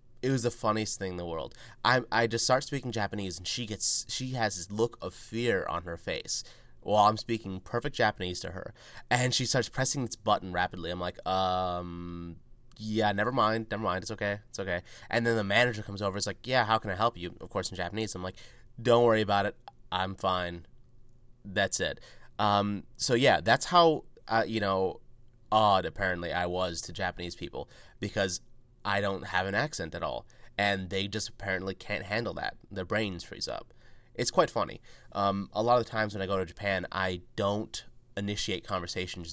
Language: English